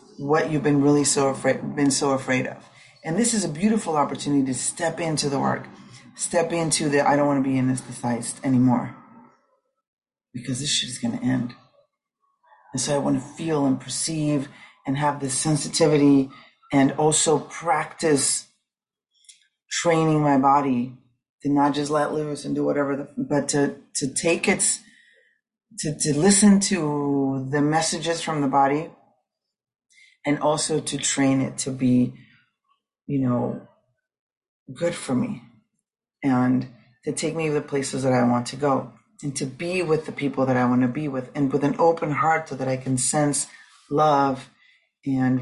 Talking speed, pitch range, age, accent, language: 170 wpm, 130-160 Hz, 30-49, American, English